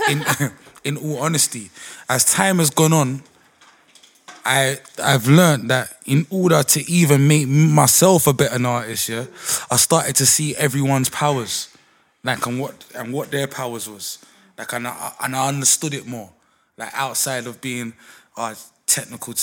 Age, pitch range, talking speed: 20-39, 115-135 Hz, 160 wpm